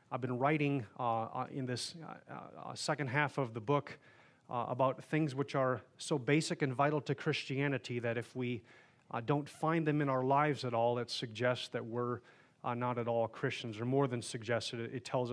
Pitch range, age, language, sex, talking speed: 120-145 Hz, 30-49, English, male, 205 wpm